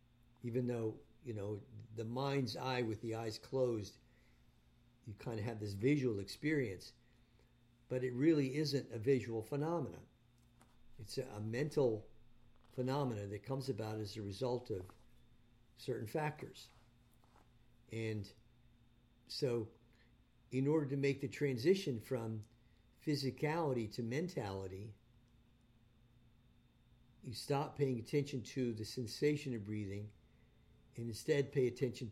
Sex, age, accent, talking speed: male, 50-69, American, 120 wpm